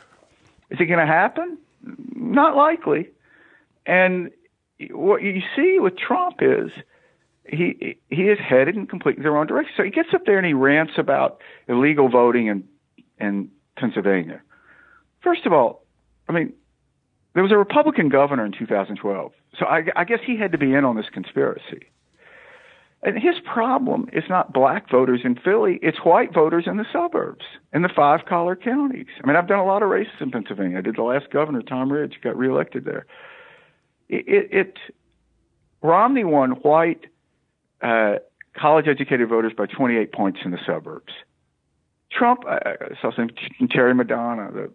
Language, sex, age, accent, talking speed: English, male, 50-69, American, 165 wpm